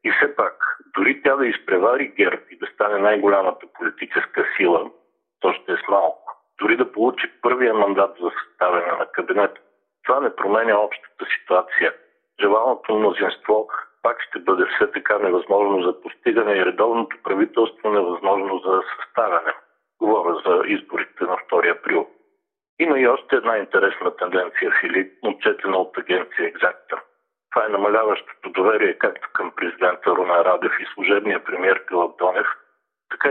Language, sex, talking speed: Bulgarian, male, 145 wpm